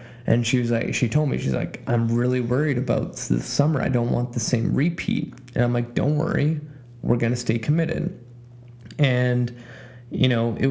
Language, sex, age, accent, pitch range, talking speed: English, male, 20-39, American, 120-140 Hz, 195 wpm